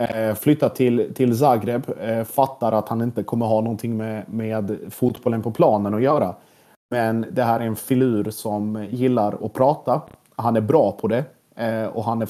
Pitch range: 105-120 Hz